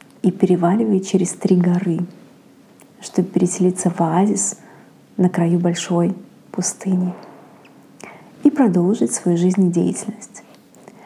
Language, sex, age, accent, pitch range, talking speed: Russian, female, 30-49, native, 180-215 Hz, 90 wpm